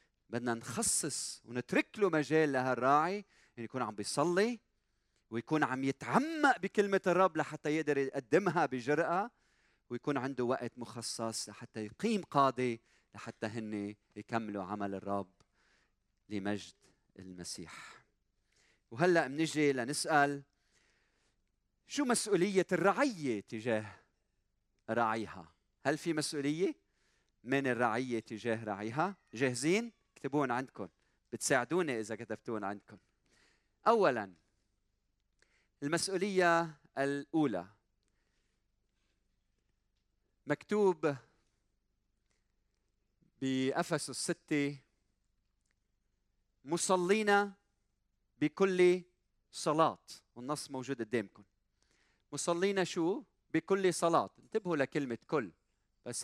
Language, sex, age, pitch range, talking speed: Arabic, male, 40-59, 100-155 Hz, 80 wpm